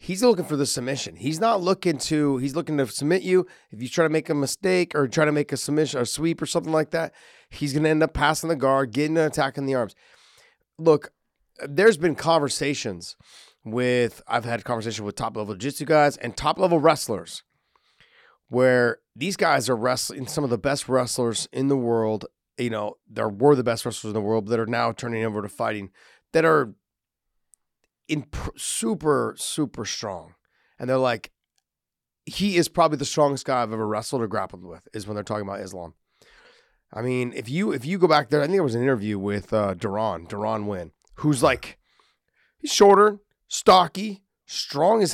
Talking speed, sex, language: 200 wpm, male, English